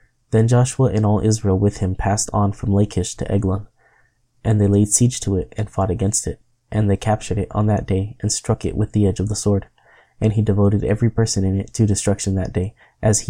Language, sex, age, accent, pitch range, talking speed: English, male, 20-39, American, 100-110 Hz, 235 wpm